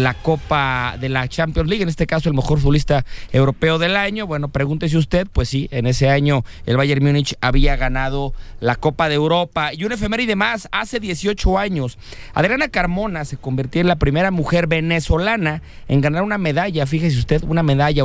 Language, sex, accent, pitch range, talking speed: English, male, Mexican, 135-175 Hz, 190 wpm